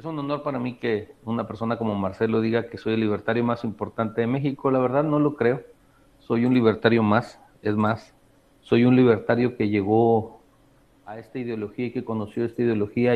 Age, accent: 40-59, Mexican